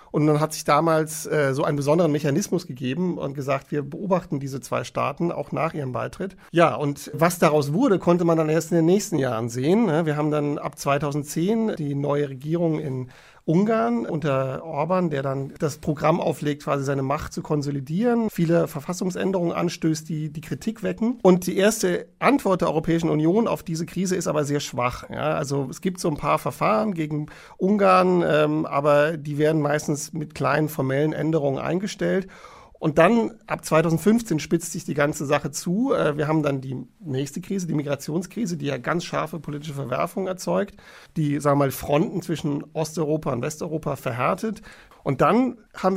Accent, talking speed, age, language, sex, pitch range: German, 175 wpm, 50-69, German, male, 145-185 Hz